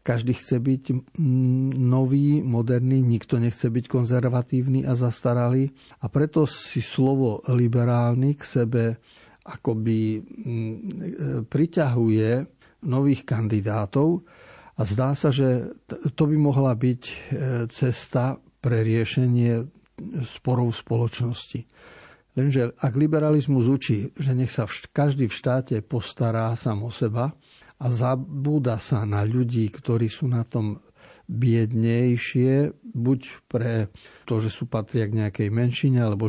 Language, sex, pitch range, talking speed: Slovak, male, 115-135 Hz, 115 wpm